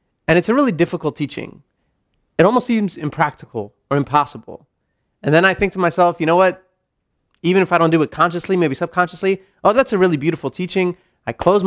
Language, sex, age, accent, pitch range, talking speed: English, male, 30-49, American, 145-180 Hz, 195 wpm